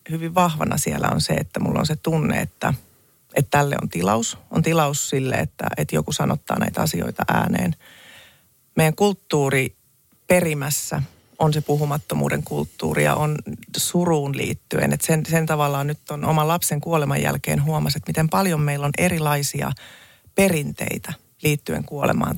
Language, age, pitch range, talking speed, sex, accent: Finnish, 30-49, 140-165 Hz, 145 wpm, female, native